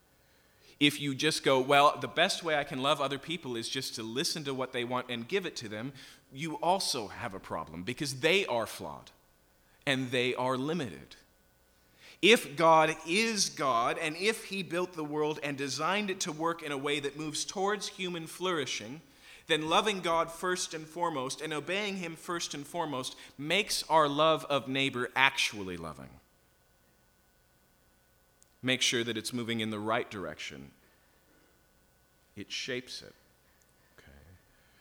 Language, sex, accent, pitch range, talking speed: English, male, American, 125-160 Hz, 160 wpm